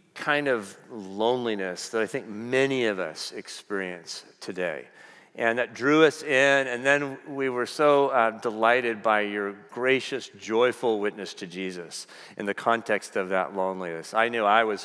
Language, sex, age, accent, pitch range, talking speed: English, male, 40-59, American, 110-140 Hz, 160 wpm